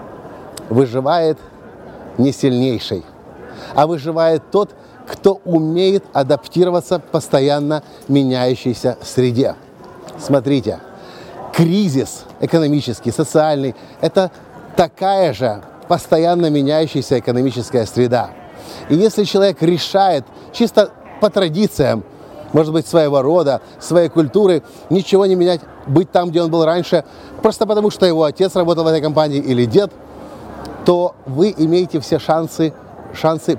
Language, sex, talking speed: Russian, male, 115 wpm